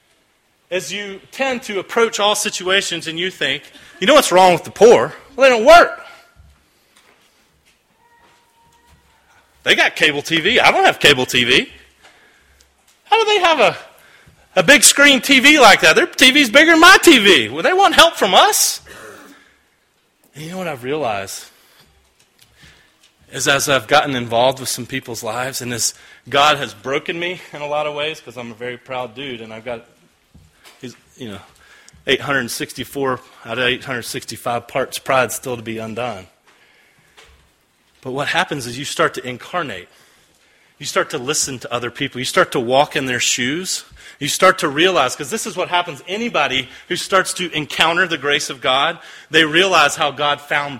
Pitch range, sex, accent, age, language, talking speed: 130-210 Hz, male, American, 30-49, English, 170 wpm